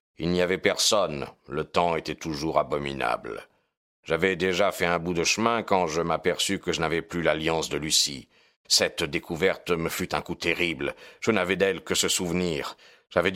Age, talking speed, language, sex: 50-69, 180 wpm, French, male